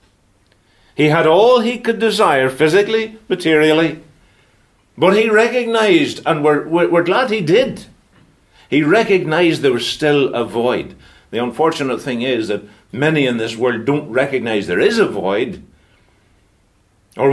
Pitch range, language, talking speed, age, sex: 105-170 Hz, English, 140 wpm, 60-79, male